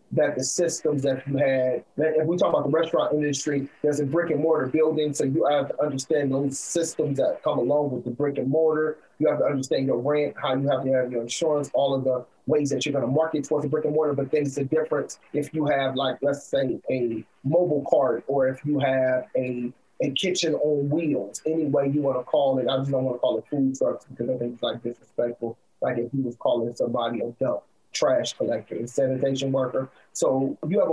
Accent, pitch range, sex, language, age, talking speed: American, 130-160 Hz, male, English, 30-49, 235 wpm